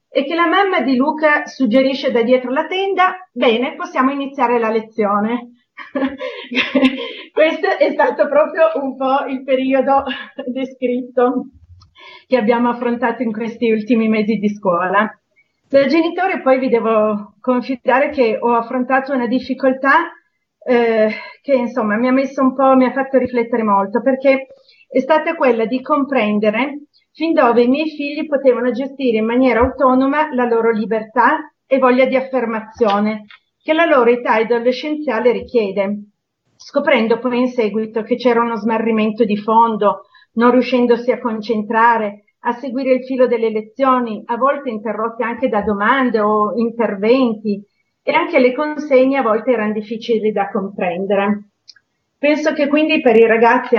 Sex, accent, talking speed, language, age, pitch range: female, native, 145 wpm, Italian, 40-59, 225-270 Hz